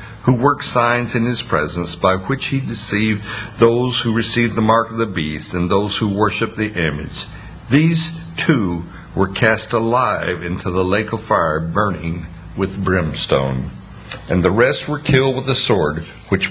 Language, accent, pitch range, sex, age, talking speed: English, American, 100-125 Hz, male, 60-79, 165 wpm